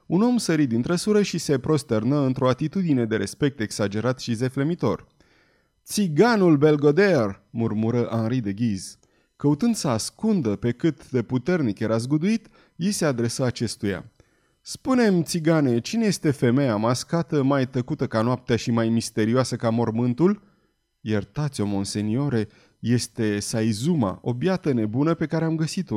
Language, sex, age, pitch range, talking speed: Romanian, male, 30-49, 115-165 Hz, 135 wpm